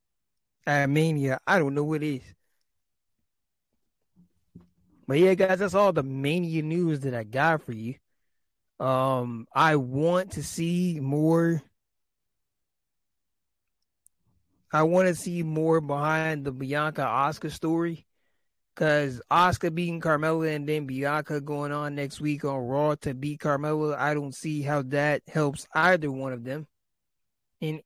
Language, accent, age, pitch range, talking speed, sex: English, American, 20-39, 130-160 Hz, 140 wpm, male